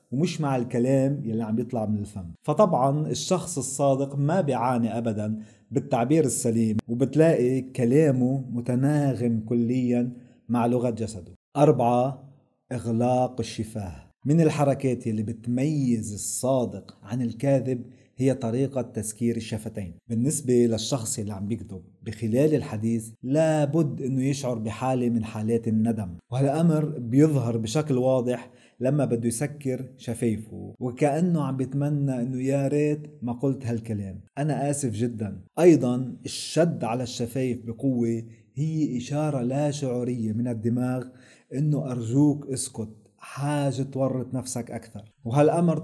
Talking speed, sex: 120 wpm, male